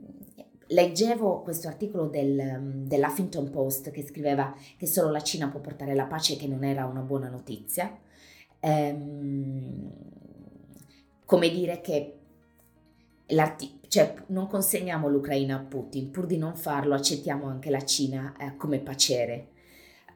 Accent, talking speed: native, 120 wpm